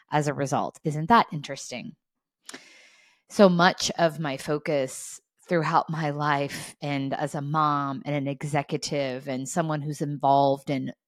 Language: English